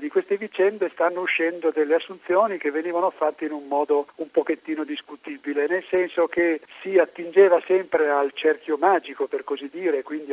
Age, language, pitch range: 50-69, Italian, 145-190 Hz